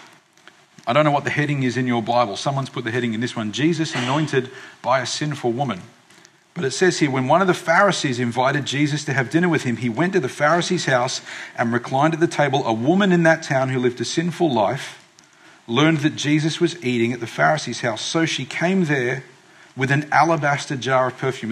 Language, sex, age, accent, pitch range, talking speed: English, male, 40-59, Australian, 125-160 Hz, 220 wpm